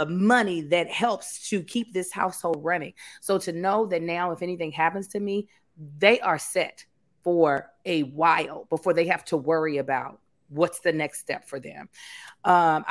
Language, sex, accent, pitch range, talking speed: English, female, American, 160-200 Hz, 170 wpm